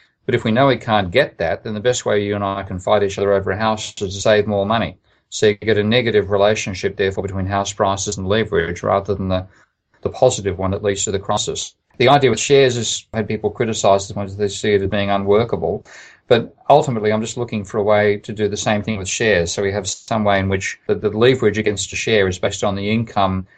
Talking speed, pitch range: 255 wpm, 100-110 Hz